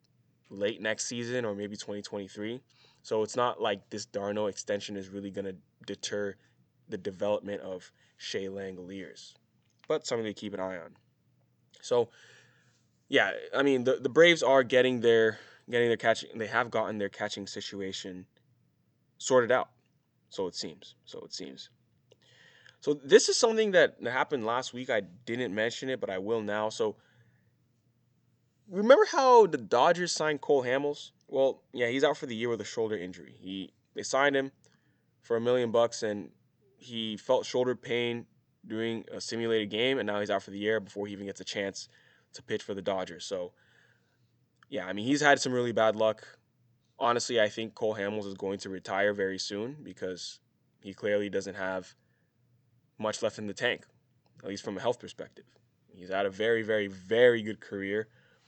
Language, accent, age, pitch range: English, American, 20-39, 100-125 Hz